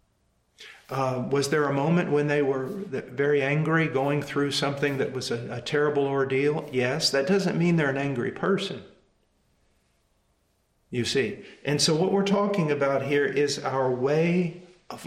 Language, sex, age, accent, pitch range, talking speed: English, male, 50-69, American, 135-185 Hz, 160 wpm